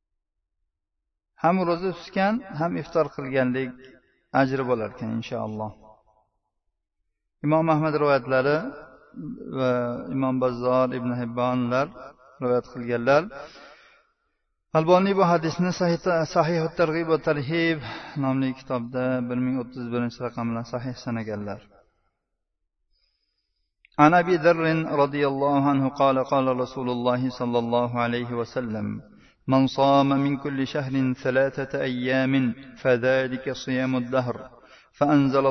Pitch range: 125-145 Hz